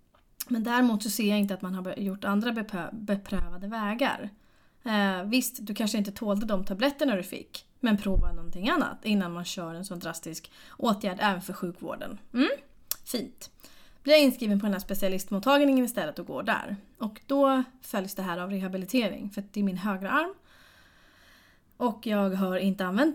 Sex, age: female, 20-39